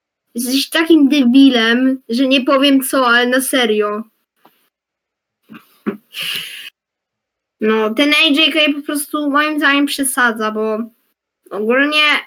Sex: female